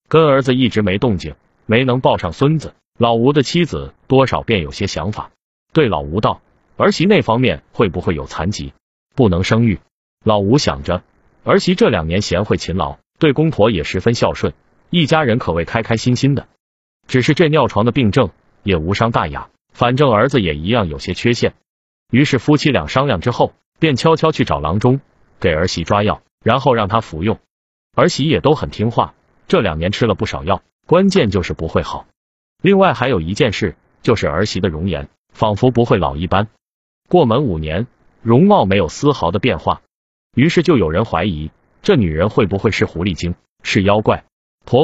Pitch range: 90-135 Hz